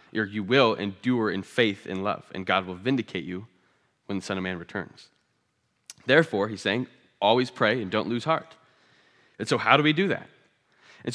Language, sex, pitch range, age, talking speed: English, male, 110-140 Hz, 20-39, 195 wpm